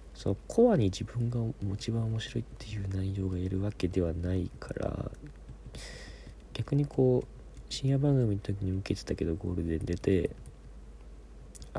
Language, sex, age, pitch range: Japanese, male, 40-59, 70-105 Hz